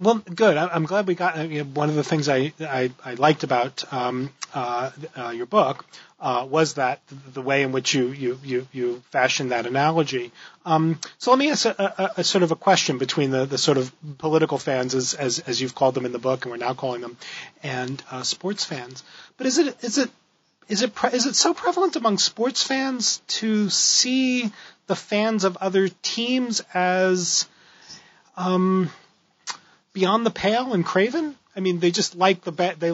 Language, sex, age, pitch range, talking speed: English, male, 30-49, 135-190 Hz, 200 wpm